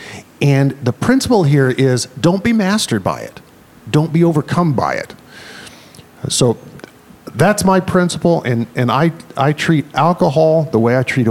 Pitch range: 115-155 Hz